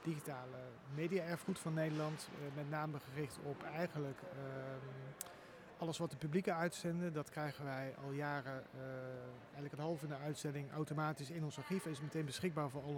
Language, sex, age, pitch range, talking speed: Dutch, male, 40-59, 150-180 Hz, 180 wpm